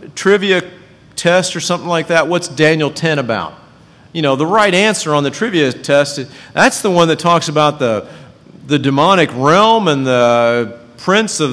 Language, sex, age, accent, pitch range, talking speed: English, male, 50-69, American, 130-175 Hz, 170 wpm